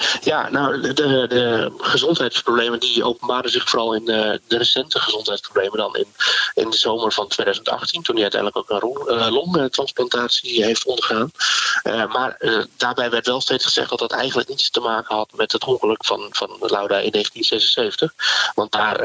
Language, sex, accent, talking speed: Dutch, male, Dutch, 175 wpm